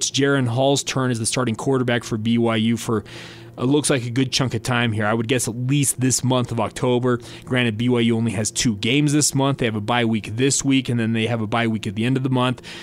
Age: 20-39